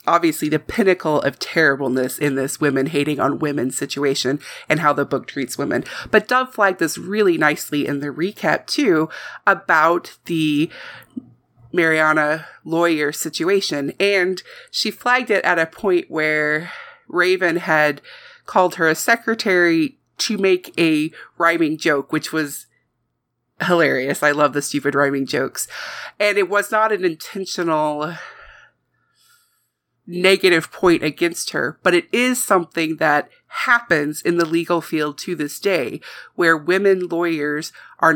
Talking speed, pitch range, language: 135 wpm, 150-195 Hz, English